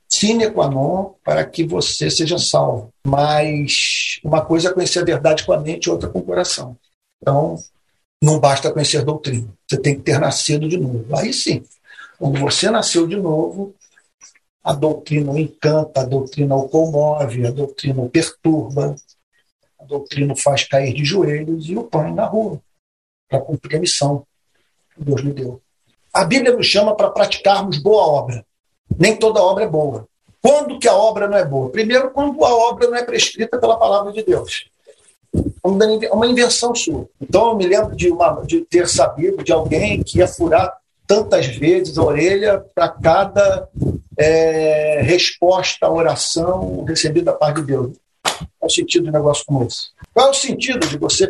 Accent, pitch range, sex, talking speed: Brazilian, 145-215 Hz, male, 175 wpm